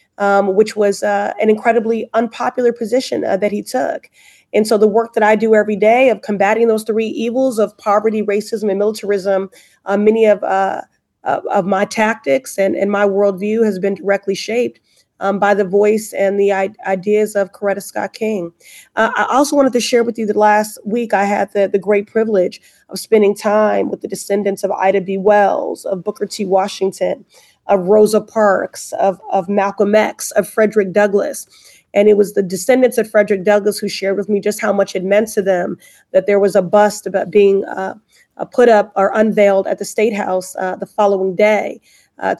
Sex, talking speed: female, 200 wpm